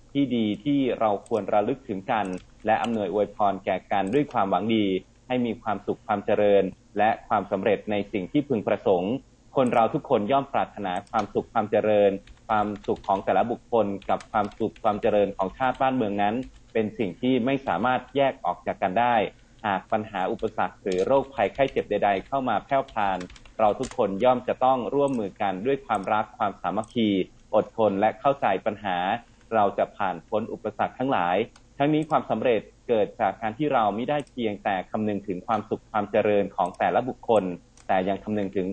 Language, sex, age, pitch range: Thai, male, 30-49, 100-130 Hz